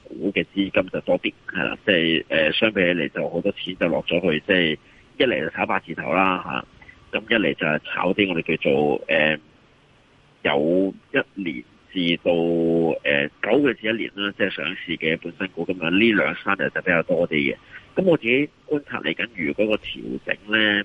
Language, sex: Chinese, male